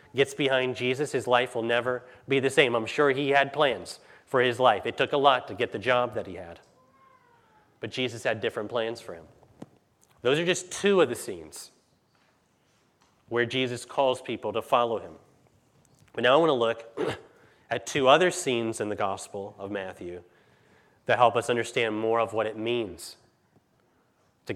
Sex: male